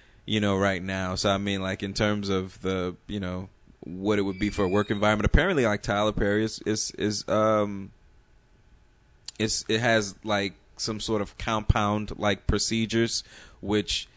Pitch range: 100-120 Hz